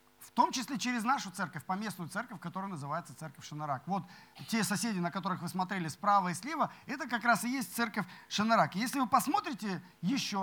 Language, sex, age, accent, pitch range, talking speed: Russian, male, 40-59, native, 185-245 Hz, 195 wpm